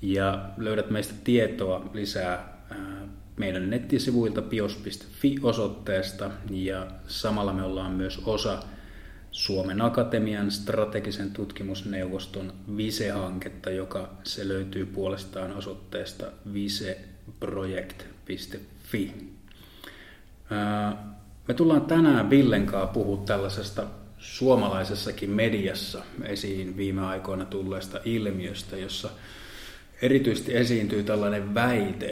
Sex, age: male, 30-49